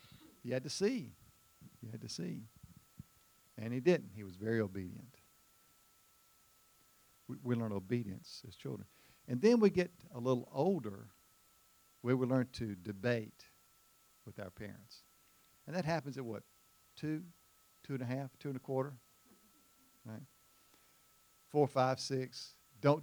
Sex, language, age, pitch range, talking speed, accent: male, English, 50-69, 115-155 Hz, 145 wpm, American